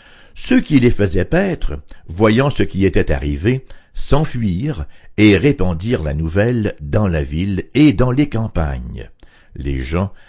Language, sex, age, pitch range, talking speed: English, male, 60-79, 85-120 Hz, 140 wpm